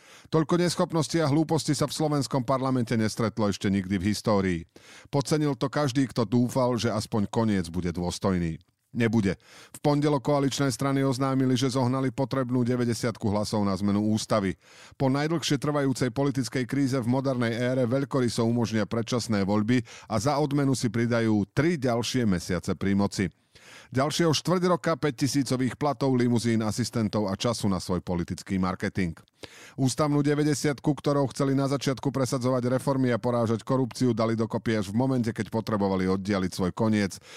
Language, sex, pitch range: Slovak, male, 105-135 Hz